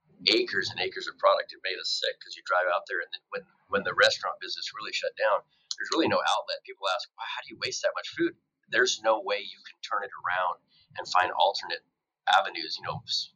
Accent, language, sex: American, English, male